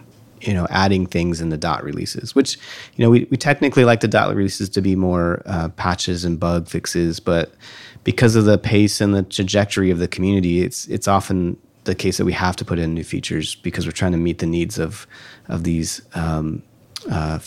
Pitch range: 85-110 Hz